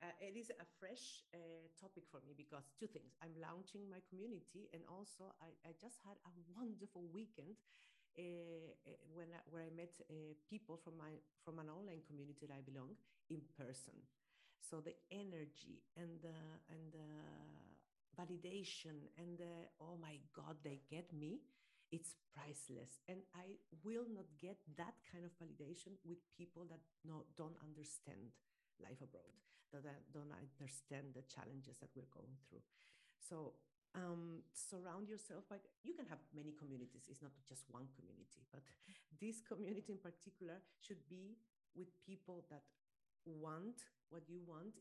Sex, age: female, 50-69